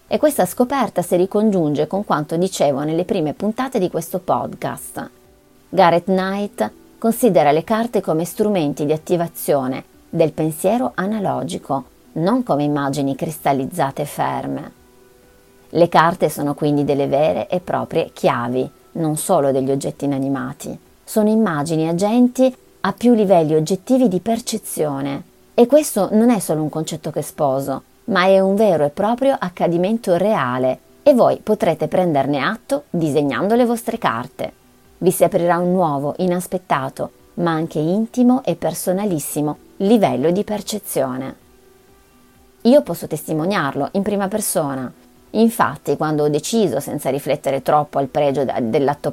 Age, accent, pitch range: 30-49, native, 150-215 Hz